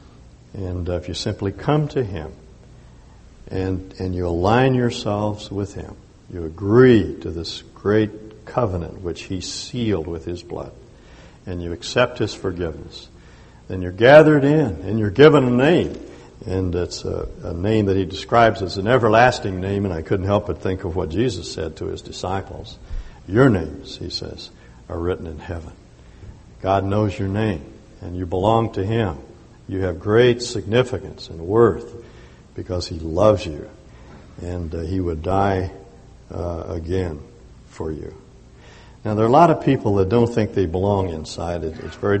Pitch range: 90-110 Hz